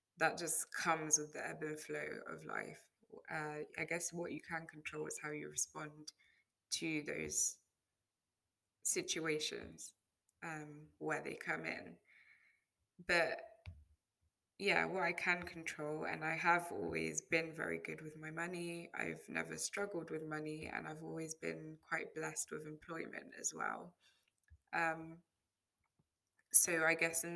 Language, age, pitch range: English, 20-39, 150-165 Hz